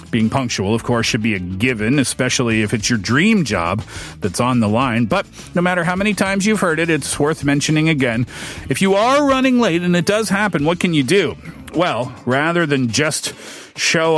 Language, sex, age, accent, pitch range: Korean, male, 40-59, American, 125-175 Hz